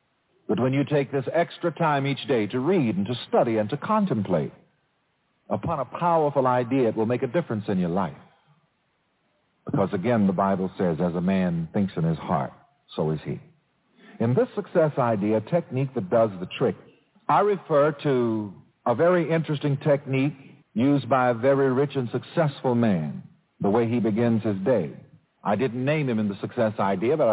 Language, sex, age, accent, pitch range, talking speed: English, male, 50-69, American, 120-190 Hz, 180 wpm